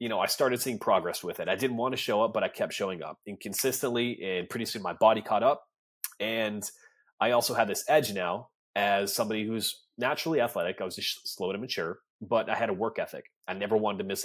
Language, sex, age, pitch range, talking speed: English, male, 30-49, 100-125 Hz, 240 wpm